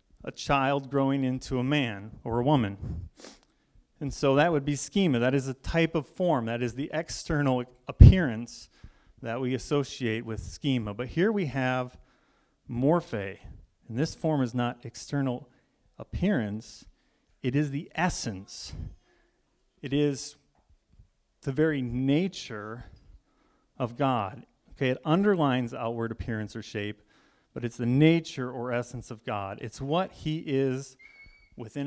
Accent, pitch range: American, 115-145 Hz